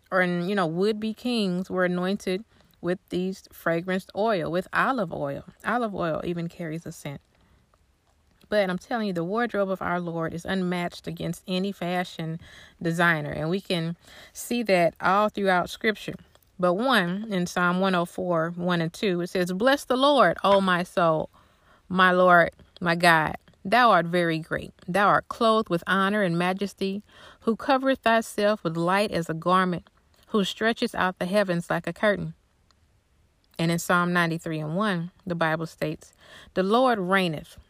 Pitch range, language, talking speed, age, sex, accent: 170-200 Hz, English, 160 wpm, 30-49, female, American